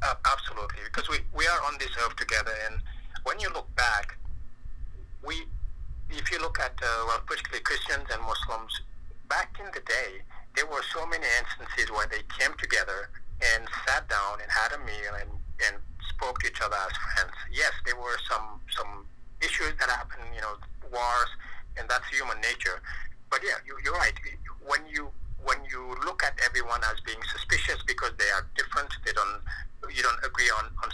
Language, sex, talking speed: English, male, 180 wpm